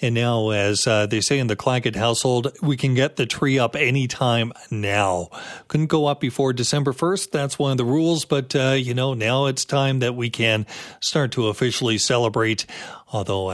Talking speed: 195 wpm